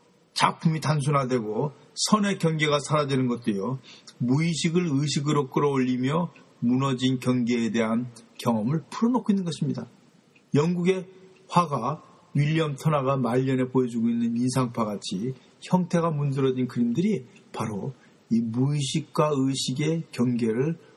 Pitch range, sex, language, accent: 125-175 Hz, male, Korean, native